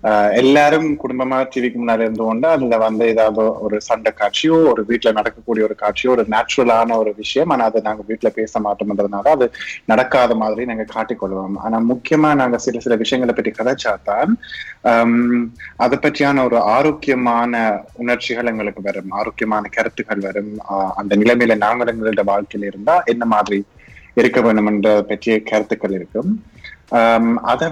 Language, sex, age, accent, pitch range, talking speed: Tamil, male, 30-49, native, 105-125 Hz, 130 wpm